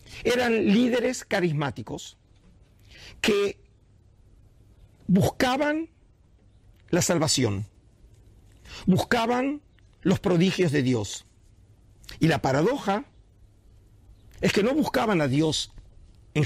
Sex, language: male, Portuguese